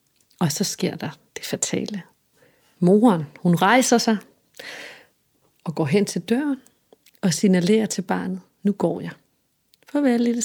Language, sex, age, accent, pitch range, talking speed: Danish, female, 30-49, native, 185-230 Hz, 145 wpm